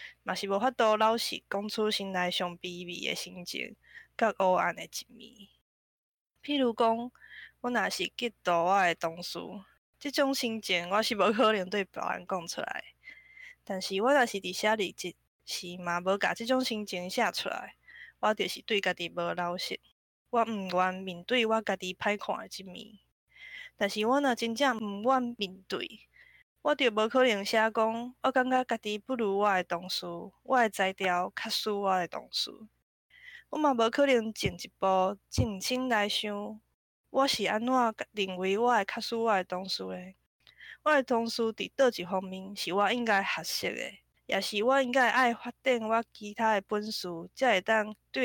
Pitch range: 185-240 Hz